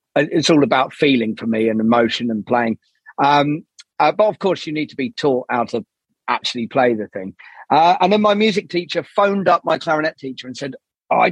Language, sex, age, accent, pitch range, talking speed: English, male, 40-59, British, 135-175 Hz, 210 wpm